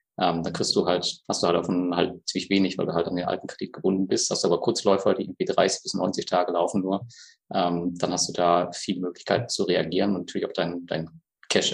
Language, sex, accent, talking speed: German, male, German, 245 wpm